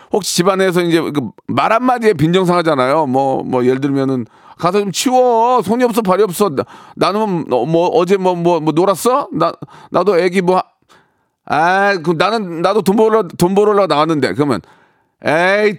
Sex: male